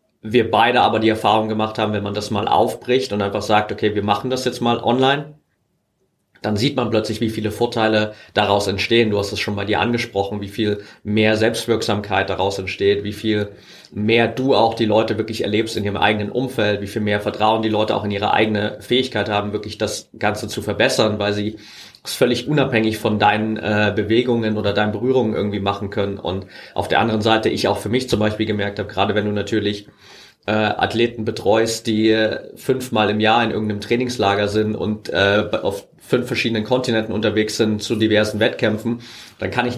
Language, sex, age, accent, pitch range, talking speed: German, male, 30-49, German, 105-115 Hz, 200 wpm